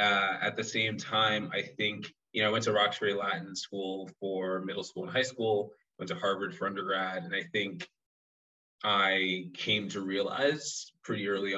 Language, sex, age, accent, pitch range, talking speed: English, male, 20-39, American, 95-115 Hz, 180 wpm